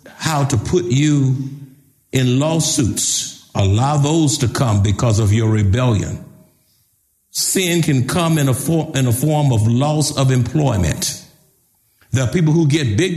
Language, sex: English, male